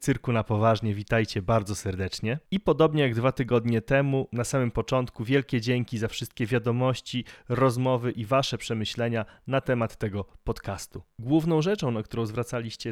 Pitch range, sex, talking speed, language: 110-135 Hz, male, 155 wpm, Polish